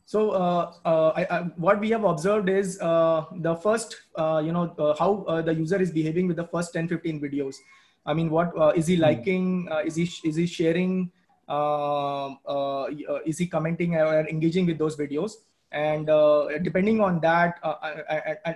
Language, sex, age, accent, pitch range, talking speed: English, male, 20-39, Indian, 155-180 Hz, 195 wpm